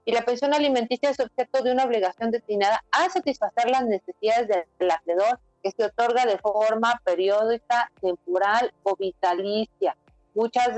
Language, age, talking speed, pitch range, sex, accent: Spanish, 40-59, 145 wpm, 195-245 Hz, female, Mexican